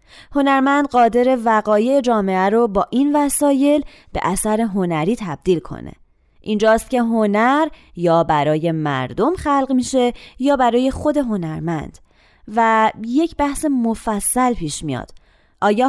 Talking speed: 120 wpm